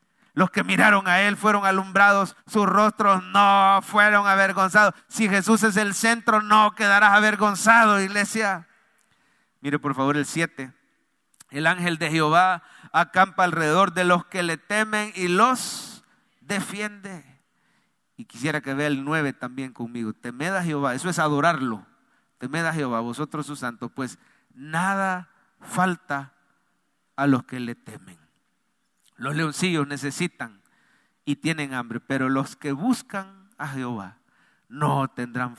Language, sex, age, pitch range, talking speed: English, male, 40-59, 145-200 Hz, 140 wpm